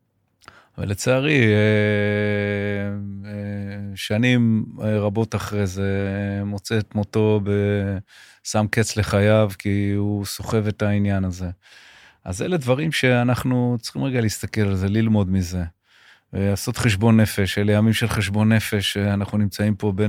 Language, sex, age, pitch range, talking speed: Hebrew, male, 30-49, 100-110 Hz, 120 wpm